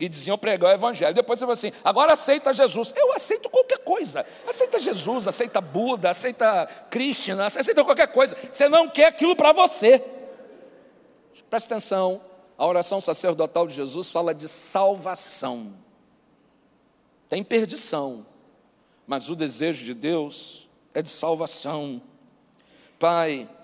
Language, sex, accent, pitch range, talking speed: Portuguese, male, Brazilian, 180-300 Hz, 130 wpm